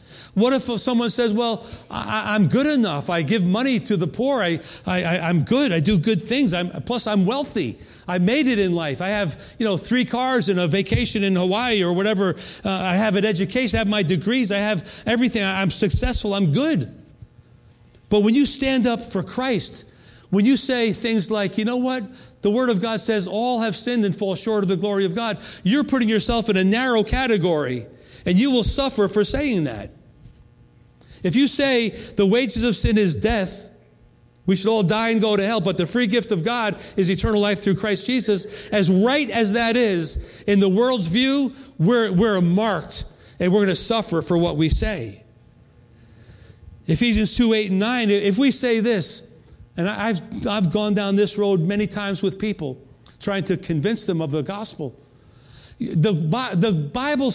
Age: 40-59